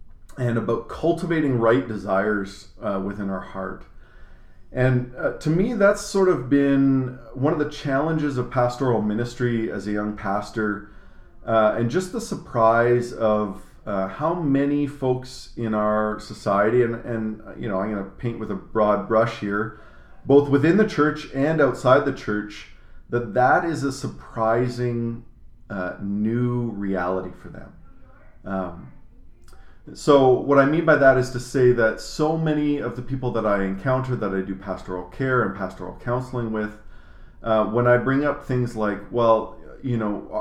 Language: English